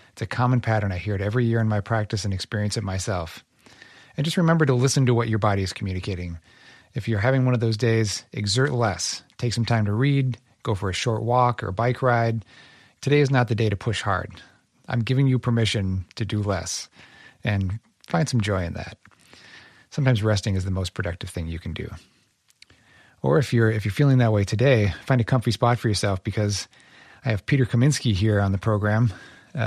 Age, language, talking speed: 30-49, English, 210 wpm